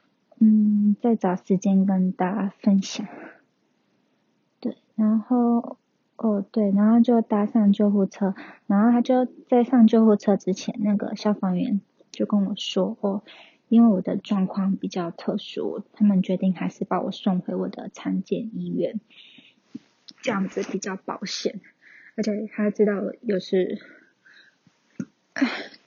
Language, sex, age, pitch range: Chinese, female, 20-39, 190-235 Hz